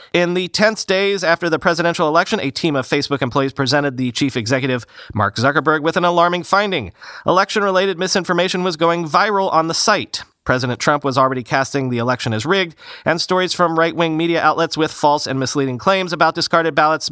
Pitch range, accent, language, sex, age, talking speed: 140-185 Hz, American, English, male, 30-49, 190 wpm